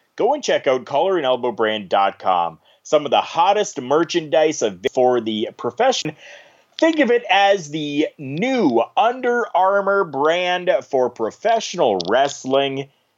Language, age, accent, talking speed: English, 30-49, American, 115 wpm